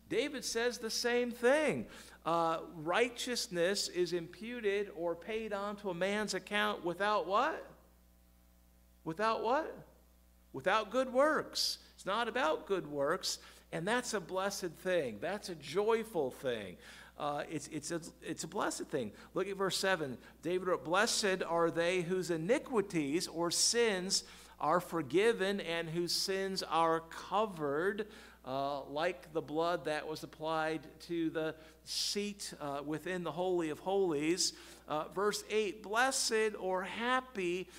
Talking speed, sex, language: 135 wpm, male, English